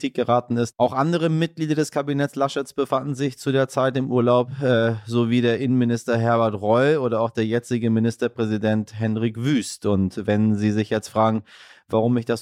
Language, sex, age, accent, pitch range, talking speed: German, male, 30-49, German, 110-135 Hz, 180 wpm